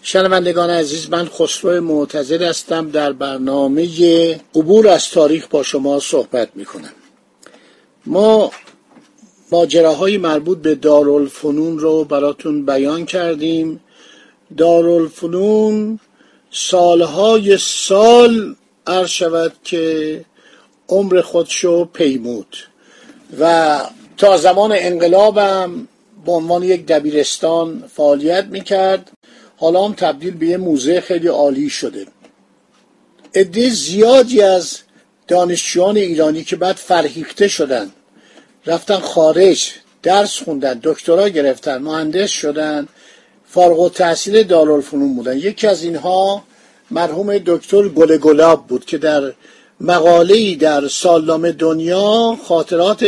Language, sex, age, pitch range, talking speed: Persian, male, 50-69, 160-195 Hz, 100 wpm